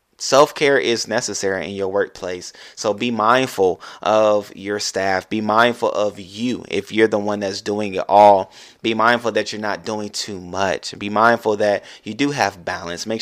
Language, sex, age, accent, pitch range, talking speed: English, male, 20-39, American, 100-110 Hz, 180 wpm